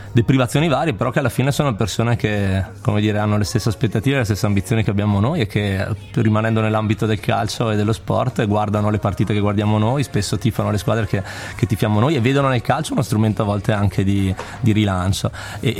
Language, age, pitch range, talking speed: Italian, 20-39, 100-115 Hz, 215 wpm